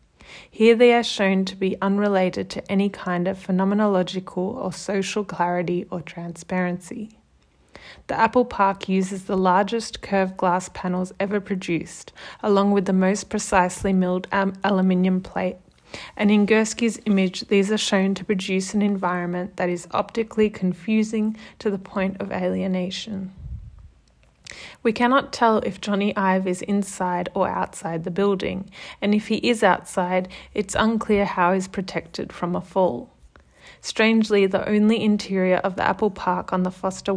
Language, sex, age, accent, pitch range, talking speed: English, female, 30-49, Australian, 185-205 Hz, 150 wpm